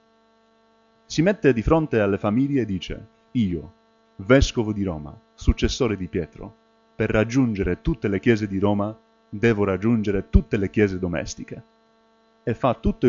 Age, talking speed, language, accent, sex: 30-49, 140 wpm, Italian, native, male